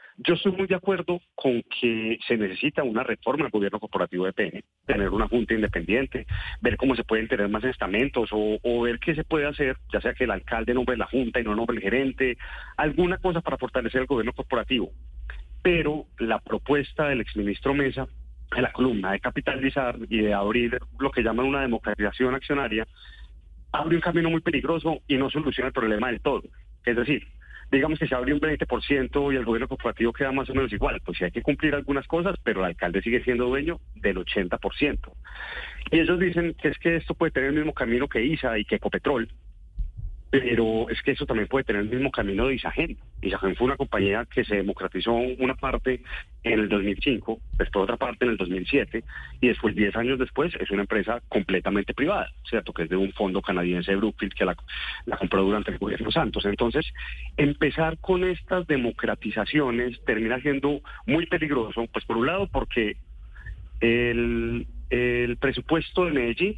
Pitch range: 110-145 Hz